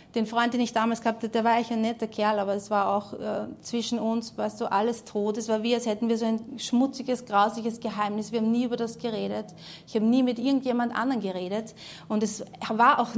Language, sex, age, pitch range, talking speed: German, female, 30-49, 195-235 Hz, 240 wpm